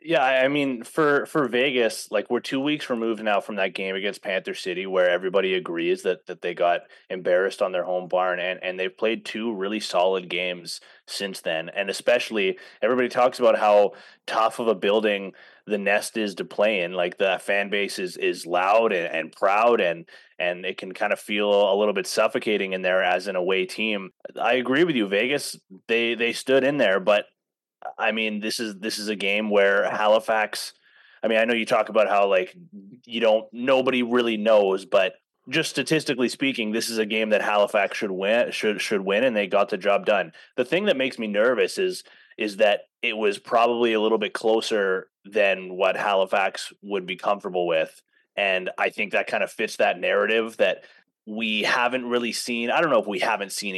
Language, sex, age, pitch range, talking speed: English, male, 30-49, 100-130 Hz, 205 wpm